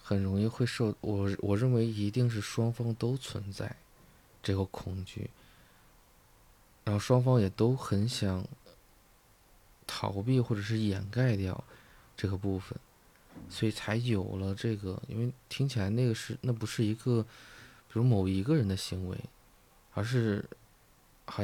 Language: Chinese